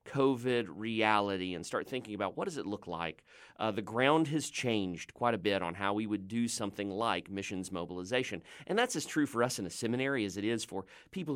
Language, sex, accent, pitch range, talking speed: English, male, American, 100-130 Hz, 220 wpm